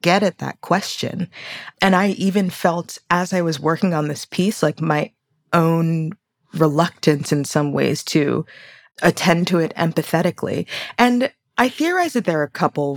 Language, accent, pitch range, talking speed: English, American, 150-190 Hz, 160 wpm